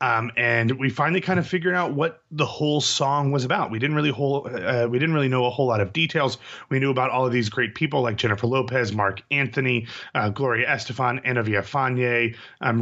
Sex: male